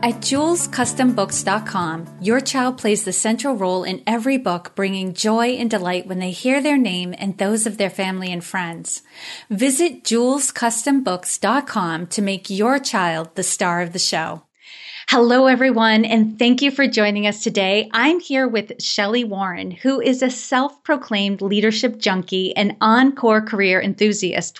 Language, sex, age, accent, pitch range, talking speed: English, female, 40-59, American, 195-255 Hz, 150 wpm